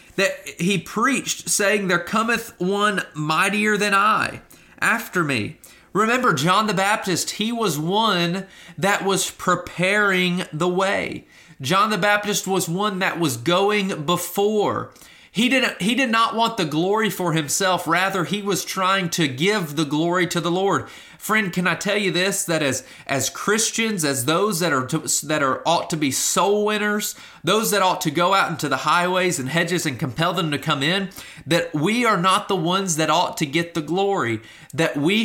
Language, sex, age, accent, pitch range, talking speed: English, male, 30-49, American, 165-205 Hz, 180 wpm